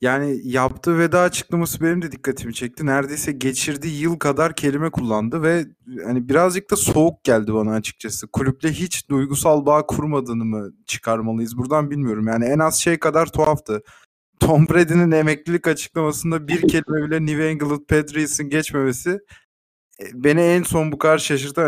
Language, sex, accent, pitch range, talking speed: Turkish, male, native, 135-170 Hz, 150 wpm